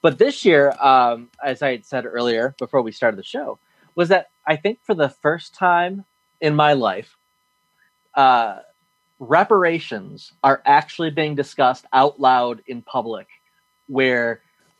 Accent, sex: American, male